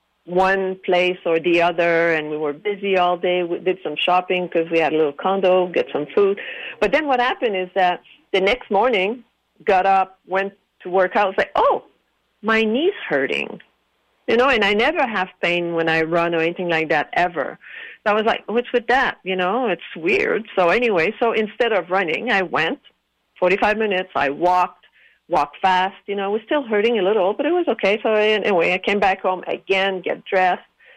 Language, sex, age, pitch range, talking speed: English, female, 50-69, 175-215 Hz, 205 wpm